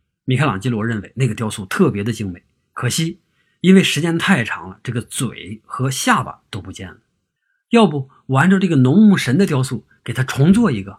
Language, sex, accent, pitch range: Chinese, male, native, 110-165 Hz